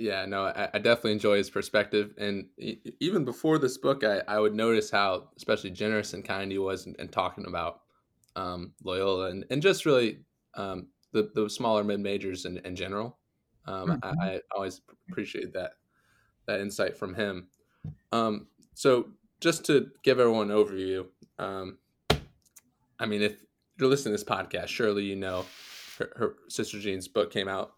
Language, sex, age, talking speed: English, male, 20-39, 170 wpm